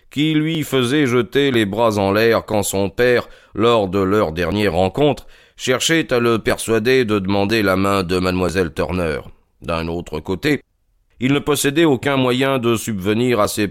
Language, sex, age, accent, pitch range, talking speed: French, male, 40-59, French, 95-130 Hz, 170 wpm